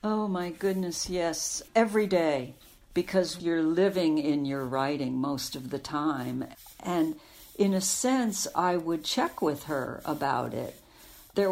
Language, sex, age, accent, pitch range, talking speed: English, female, 60-79, American, 145-195 Hz, 145 wpm